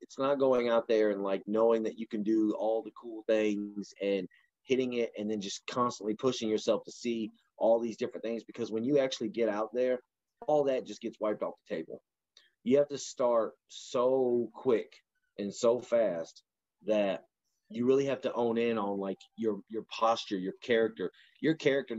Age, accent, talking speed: 30-49, American, 195 wpm